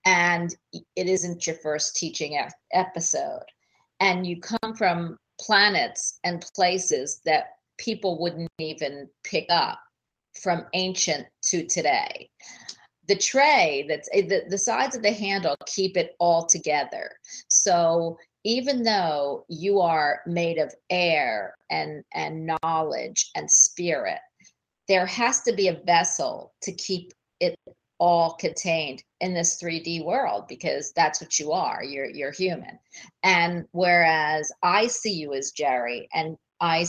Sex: female